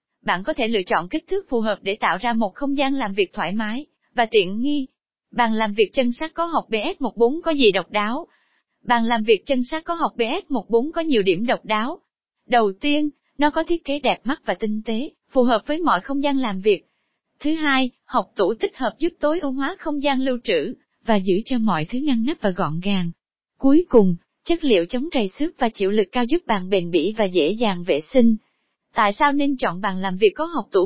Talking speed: 235 wpm